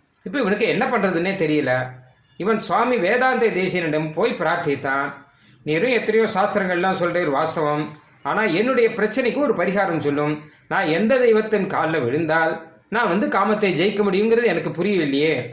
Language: Tamil